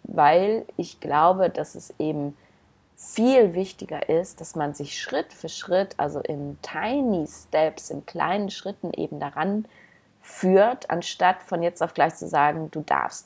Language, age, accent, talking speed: German, 30-49, German, 155 wpm